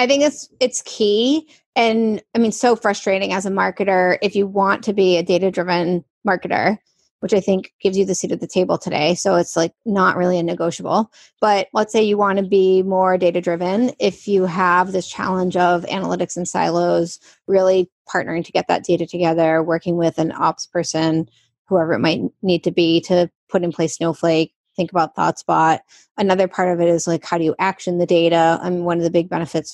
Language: English